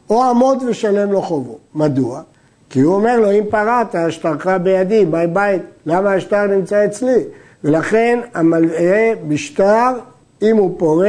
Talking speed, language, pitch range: 145 wpm, Hebrew, 170-225 Hz